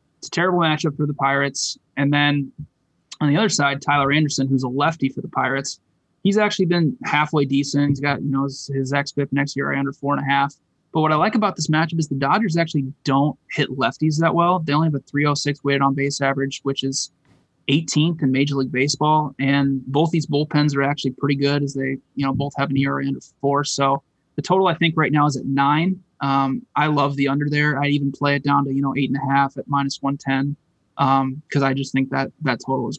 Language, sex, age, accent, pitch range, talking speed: English, male, 20-39, American, 135-150 Hz, 240 wpm